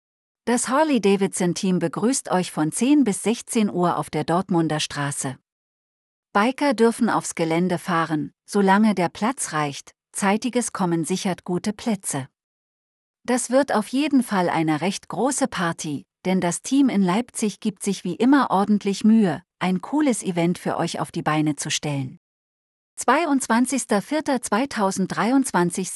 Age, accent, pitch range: 40-59, German, 165-220 Hz